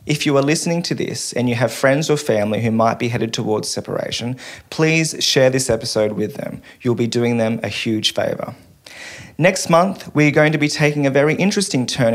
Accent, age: Australian, 30-49